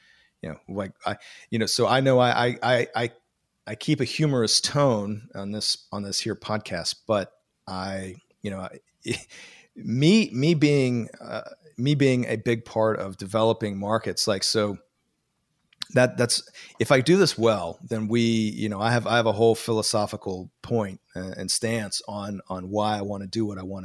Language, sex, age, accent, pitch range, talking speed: English, male, 40-59, American, 95-120 Hz, 185 wpm